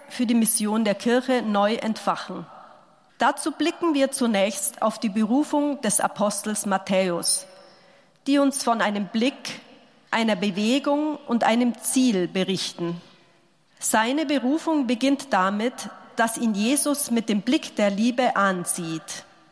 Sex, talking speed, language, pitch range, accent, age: female, 125 wpm, German, 200-265 Hz, German, 40-59